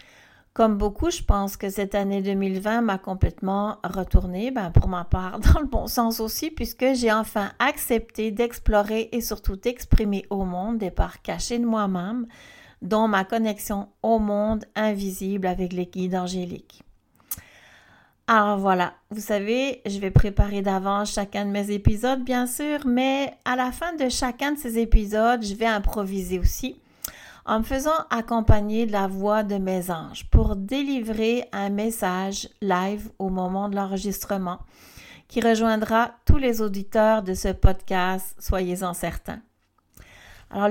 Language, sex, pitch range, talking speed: French, female, 195-245 Hz, 150 wpm